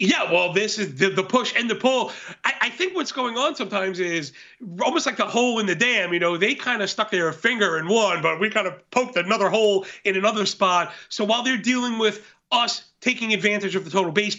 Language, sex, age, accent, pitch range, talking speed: English, male, 30-49, American, 190-245 Hz, 240 wpm